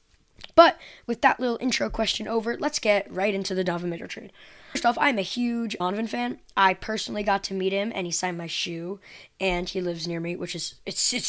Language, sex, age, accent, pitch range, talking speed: English, female, 20-39, American, 180-215 Hz, 225 wpm